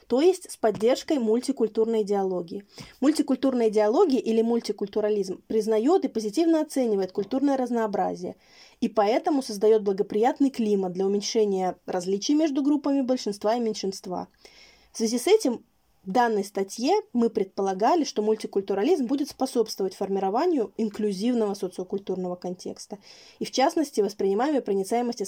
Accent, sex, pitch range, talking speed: native, female, 200-265 Hz, 120 wpm